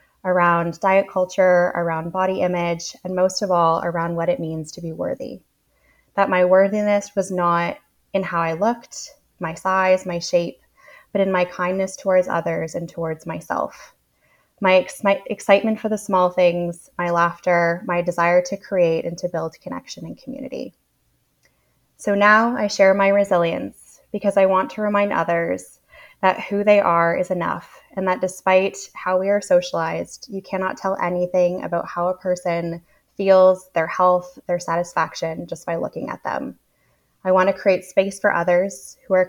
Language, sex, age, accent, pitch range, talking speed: English, female, 20-39, American, 175-195 Hz, 170 wpm